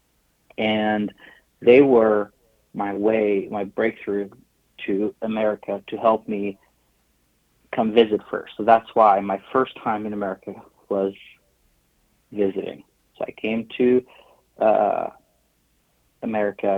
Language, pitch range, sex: English, 100-110 Hz, male